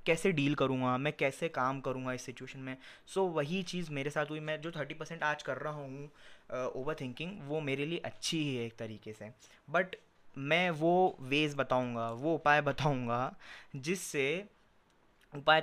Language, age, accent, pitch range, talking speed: Hindi, 20-39, native, 130-155 Hz, 175 wpm